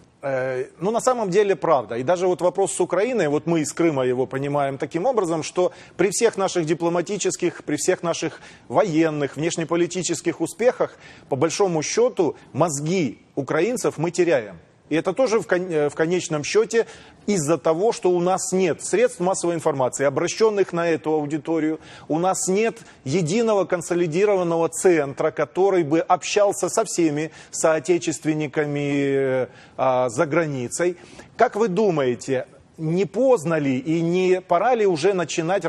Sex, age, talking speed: male, 30-49, 135 wpm